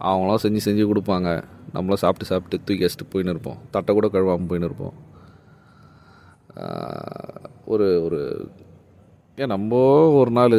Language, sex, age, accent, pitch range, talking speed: Tamil, male, 30-49, native, 100-135 Hz, 125 wpm